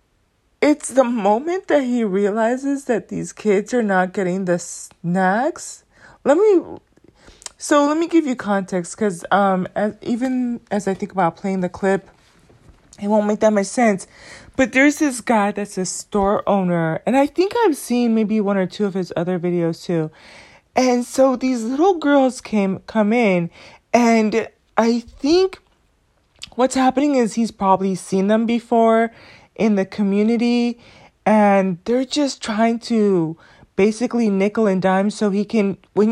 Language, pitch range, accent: English, 190-245 Hz, American